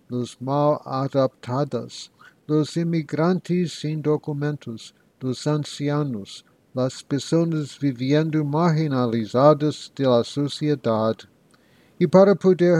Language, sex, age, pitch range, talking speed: English, male, 60-79, 125-155 Hz, 85 wpm